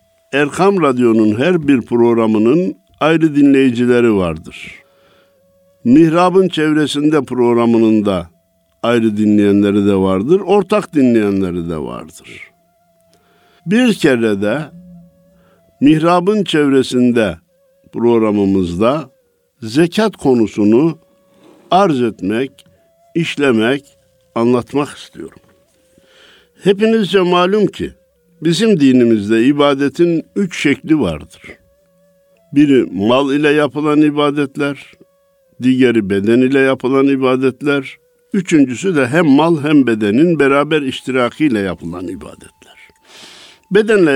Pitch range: 110-180 Hz